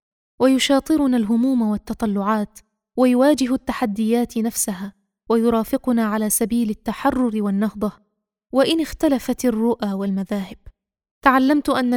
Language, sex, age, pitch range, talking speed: Arabic, female, 20-39, 215-255 Hz, 85 wpm